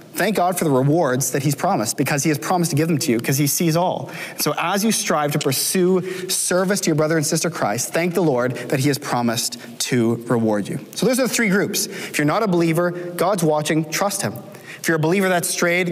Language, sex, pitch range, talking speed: English, male, 130-170 Hz, 245 wpm